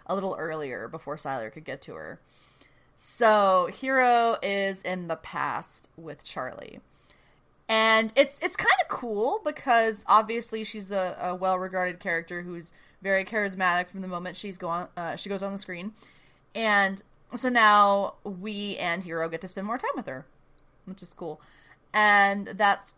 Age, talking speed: 30-49, 165 wpm